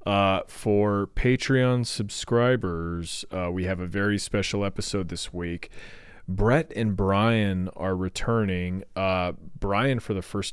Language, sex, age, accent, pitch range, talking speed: English, male, 30-49, American, 90-110 Hz, 130 wpm